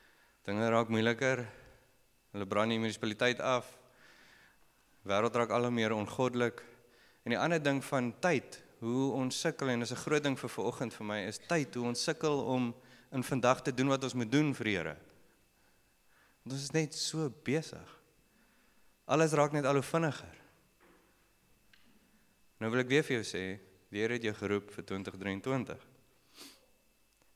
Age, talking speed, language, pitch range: 30-49, 150 wpm, English, 105-135 Hz